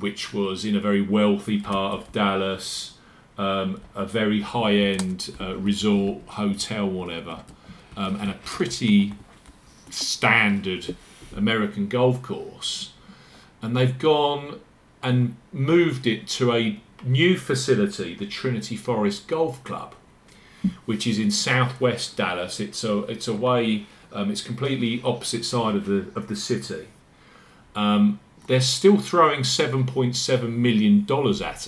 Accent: British